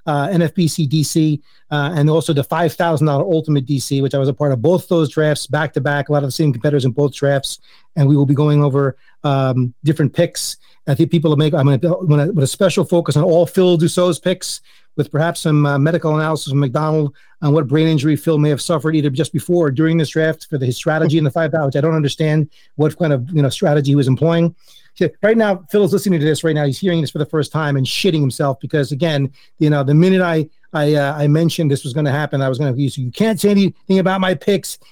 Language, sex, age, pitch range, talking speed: English, male, 40-59, 145-175 Hz, 255 wpm